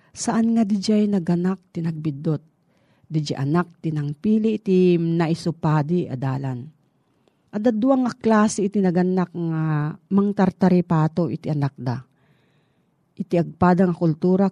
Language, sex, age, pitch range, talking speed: Filipino, female, 40-59, 155-195 Hz, 120 wpm